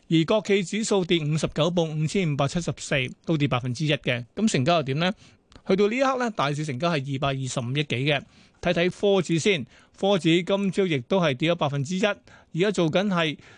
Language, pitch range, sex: Chinese, 150-195 Hz, male